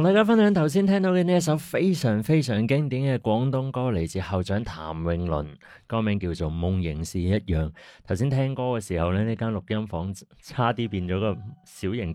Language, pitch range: Chinese, 85-115 Hz